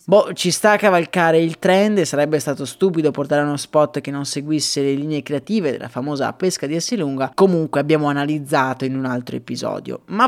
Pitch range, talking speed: 145-185 Hz, 195 wpm